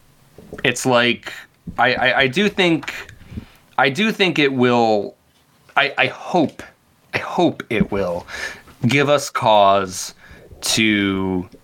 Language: English